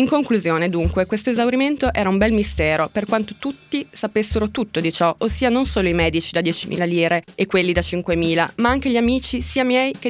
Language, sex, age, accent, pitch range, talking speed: Italian, female, 20-39, native, 190-235 Hz, 210 wpm